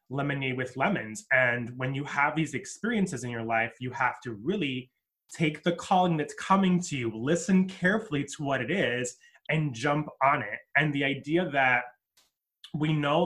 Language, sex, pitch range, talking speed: English, male, 130-165 Hz, 175 wpm